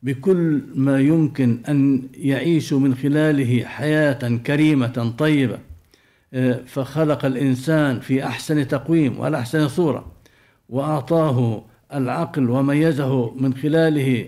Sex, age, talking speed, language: male, 60-79, 95 wpm, Arabic